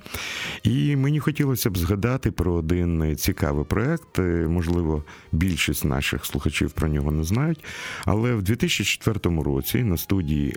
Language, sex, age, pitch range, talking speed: Russian, male, 50-69, 75-110 Hz, 130 wpm